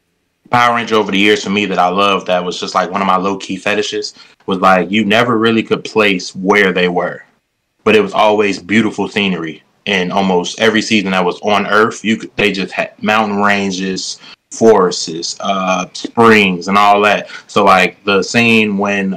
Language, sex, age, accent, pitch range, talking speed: English, male, 20-39, American, 95-110 Hz, 190 wpm